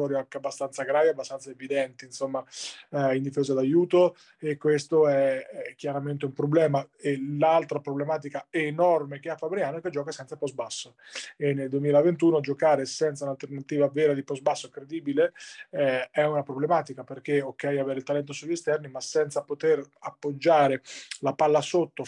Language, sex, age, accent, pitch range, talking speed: Italian, male, 30-49, native, 140-165 Hz, 160 wpm